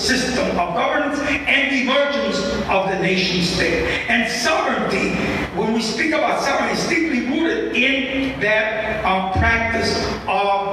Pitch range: 195-265 Hz